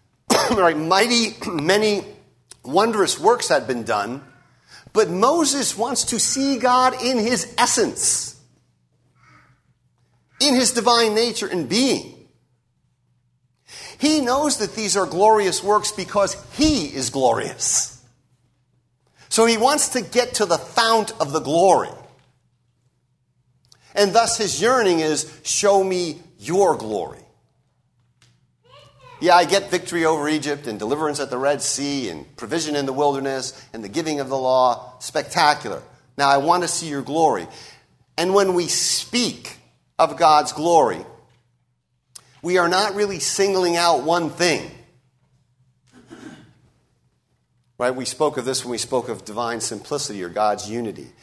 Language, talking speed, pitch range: English, 130 wpm, 125-195 Hz